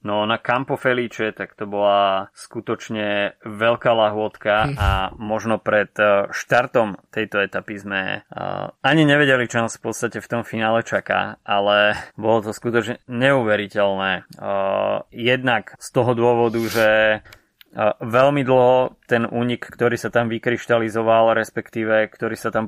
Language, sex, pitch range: Slovak, male, 105-120 Hz